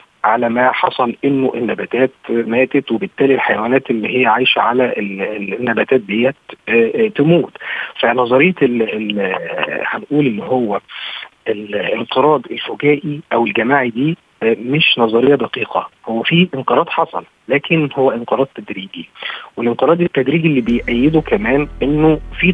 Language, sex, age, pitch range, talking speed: Arabic, male, 40-59, 120-150 Hz, 110 wpm